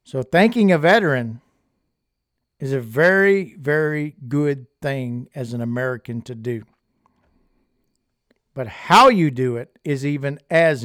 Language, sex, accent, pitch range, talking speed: English, male, American, 130-160 Hz, 125 wpm